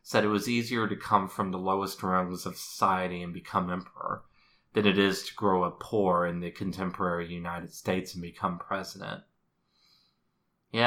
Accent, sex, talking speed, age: American, male, 170 wpm, 30-49